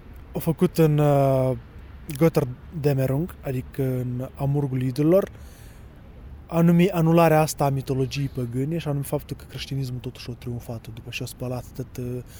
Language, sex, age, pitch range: Romanian, male, 20-39, 125-160 Hz